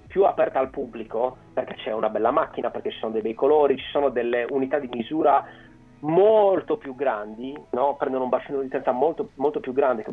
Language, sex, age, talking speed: Italian, male, 40-59, 205 wpm